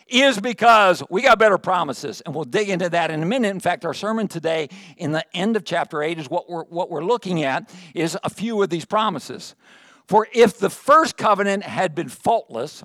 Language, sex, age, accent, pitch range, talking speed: English, male, 60-79, American, 165-215 Hz, 215 wpm